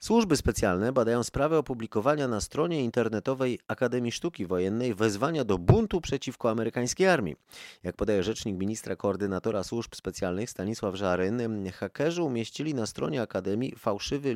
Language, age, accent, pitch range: Polish, 30-49, native, 95-130 Hz